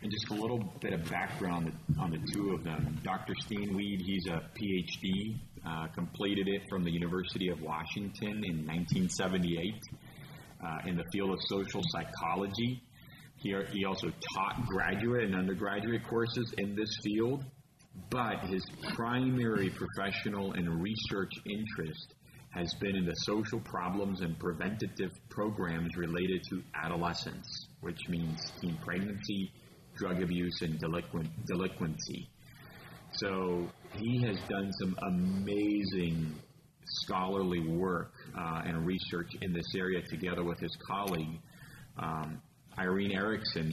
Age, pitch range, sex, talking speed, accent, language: 30-49, 85-100 Hz, male, 130 wpm, American, English